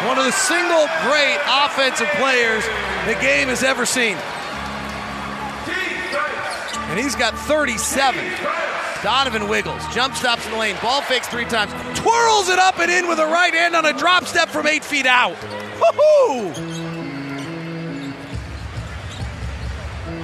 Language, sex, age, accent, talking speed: English, male, 30-49, American, 135 wpm